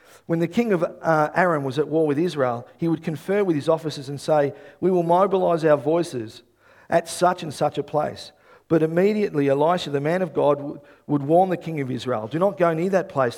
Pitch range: 150-215 Hz